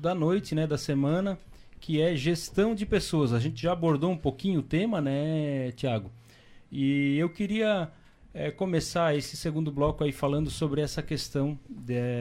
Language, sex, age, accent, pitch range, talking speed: Portuguese, male, 30-49, Brazilian, 125-160 Hz, 165 wpm